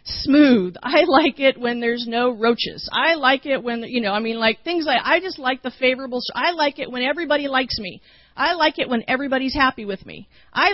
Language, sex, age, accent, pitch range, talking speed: English, female, 40-59, American, 215-280 Hz, 225 wpm